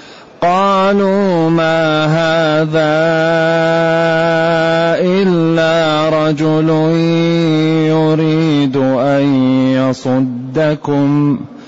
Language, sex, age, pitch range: Arabic, male, 30-49, 145-165 Hz